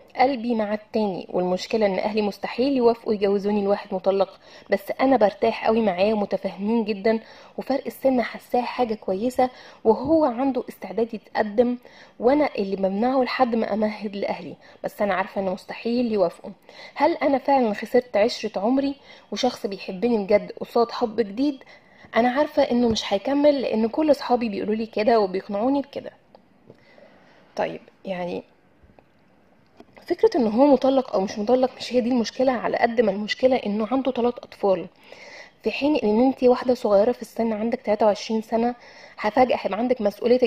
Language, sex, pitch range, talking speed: Arabic, female, 210-265 Hz, 150 wpm